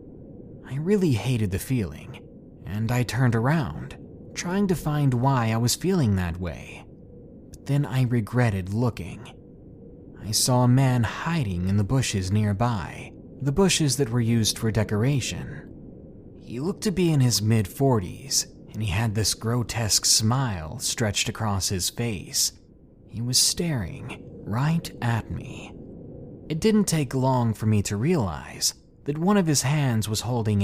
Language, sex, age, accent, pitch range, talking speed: English, male, 30-49, American, 105-135 Hz, 155 wpm